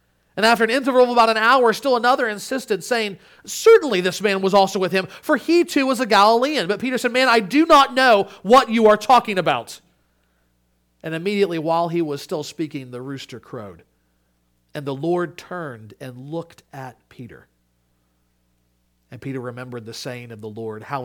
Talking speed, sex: 185 wpm, male